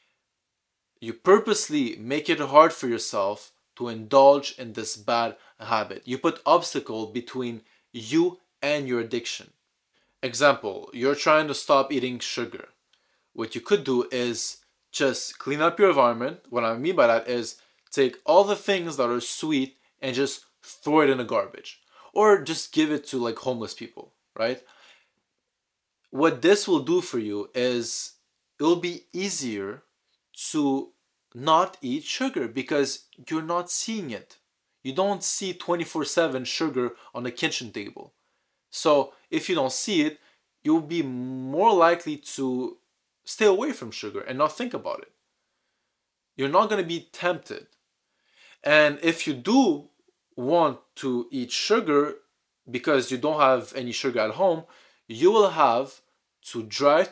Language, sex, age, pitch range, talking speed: English, male, 20-39, 125-190 Hz, 150 wpm